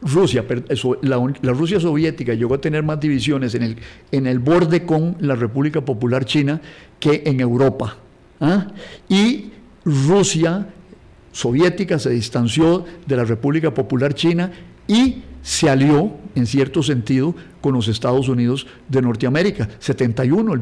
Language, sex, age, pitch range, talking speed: Spanish, male, 50-69, 135-185 Hz, 140 wpm